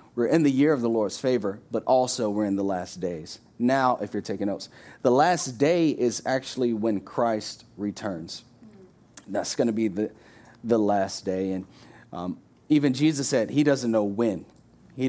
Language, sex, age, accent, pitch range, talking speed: English, male, 30-49, American, 110-130 Hz, 185 wpm